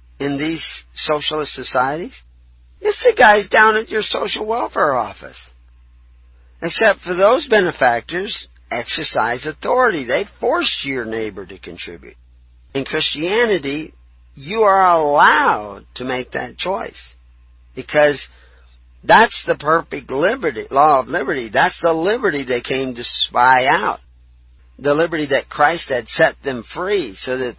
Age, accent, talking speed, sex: 50-69, American, 130 wpm, male